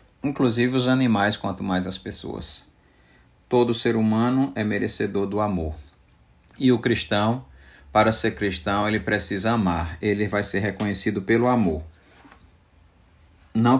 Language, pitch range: Portuguese, 90-110 Hz